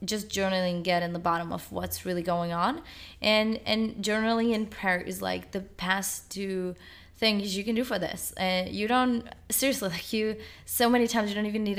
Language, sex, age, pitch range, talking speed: English, female, 20-39, 175-210 Hz, 210 wpm